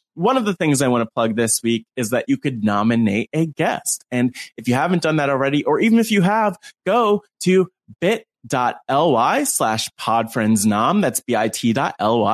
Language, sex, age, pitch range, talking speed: English, male, 20-39, 120-200 Hz, 195 wpm